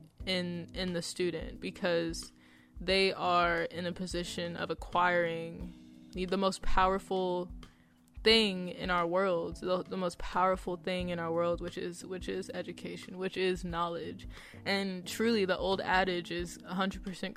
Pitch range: 170-190 Hz